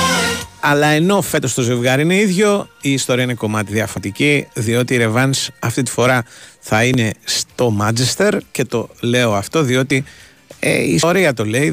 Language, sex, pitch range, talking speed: Greek, male, 110-140 Hz, 165 wpm